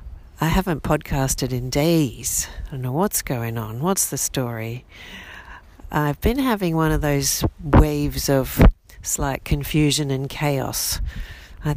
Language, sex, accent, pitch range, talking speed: English, female, Australian, 120-160 Hz, 140 wpm